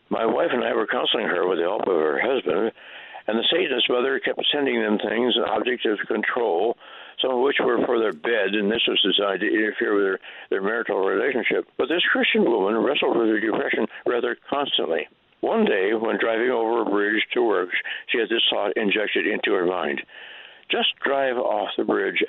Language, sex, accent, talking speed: English, male, American, 200 wpm